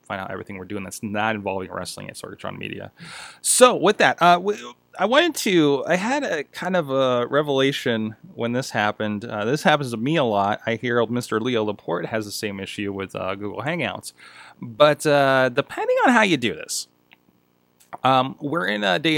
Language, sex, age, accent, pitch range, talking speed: English, male, 30-49, American, 100-145 Hz, 195 wpm